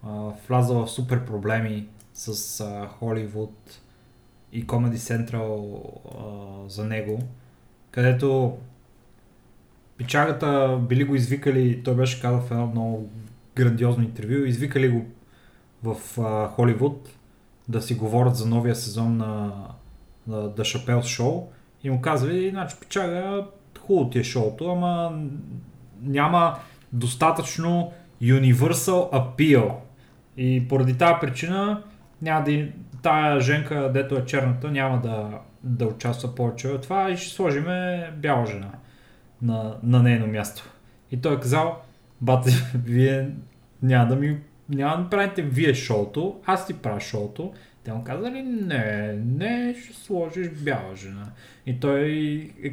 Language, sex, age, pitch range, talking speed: Bulgarian, male, 30-49, 115-145 Hz, 130 wpm